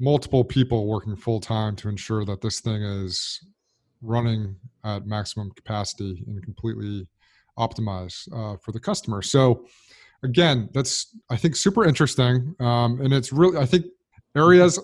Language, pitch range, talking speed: English, 115-145 Hz, 145 wpm